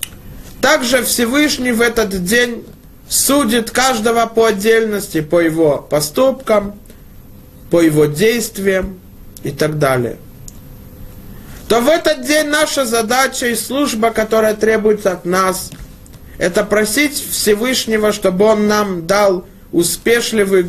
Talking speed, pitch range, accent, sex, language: 110 wpm, 165-230 Hz, native, male, Russian